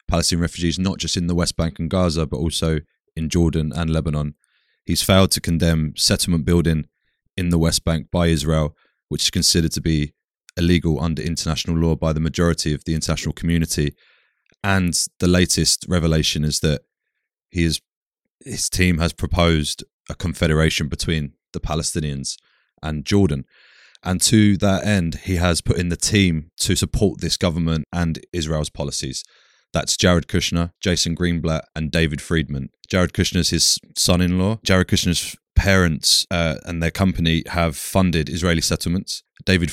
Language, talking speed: English, 155 wpm